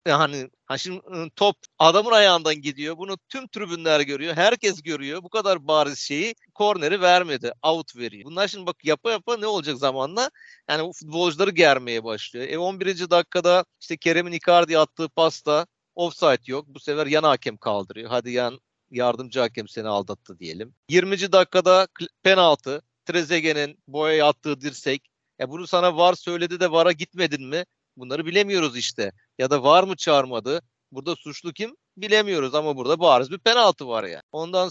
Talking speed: 160 wpm